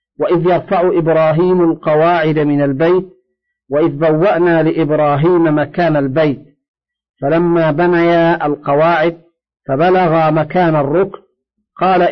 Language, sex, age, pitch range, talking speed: Arabic, male, 50-69, 155-185 Hz, 90 wpm